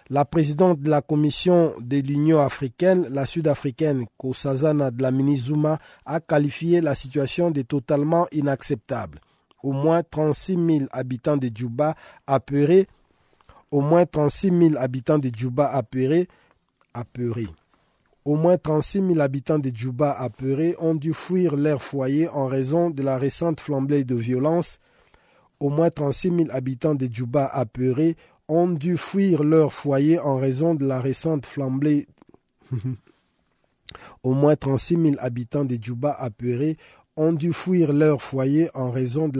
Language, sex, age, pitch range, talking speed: French, male, 50-69, 130-155 Hz, 145 wpm